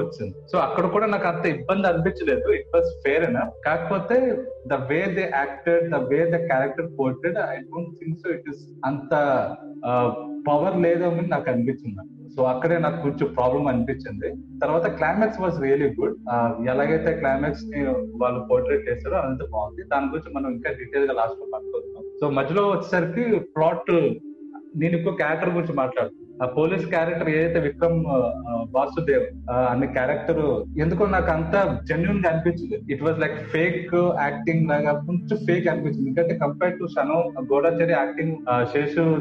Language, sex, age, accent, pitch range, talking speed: Telugu, male, 30-49, native, 140-175 Hz, 140 wpm